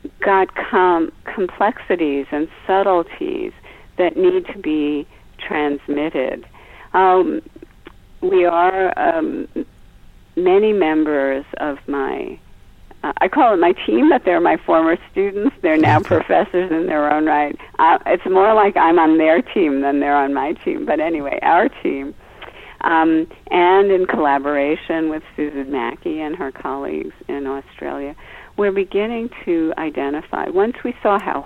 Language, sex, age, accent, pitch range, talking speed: English, female, 50-69, American, 150-210 Hz, 135 wpm